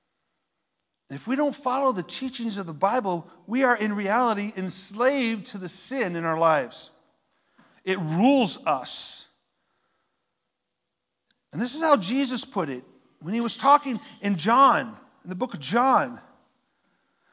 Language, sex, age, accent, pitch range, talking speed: English, male, 40-59, American, 185-260 Hz, 140 wpm